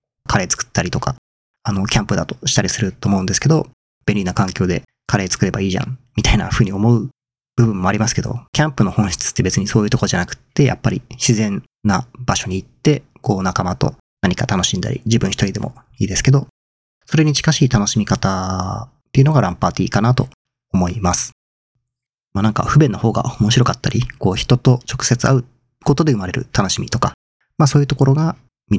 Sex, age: male, 40-59